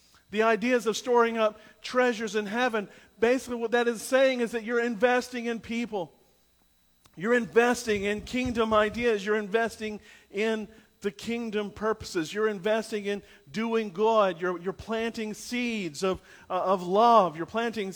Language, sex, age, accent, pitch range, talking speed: English, male, 50-69, American, 205-240 Hz, 150 wpm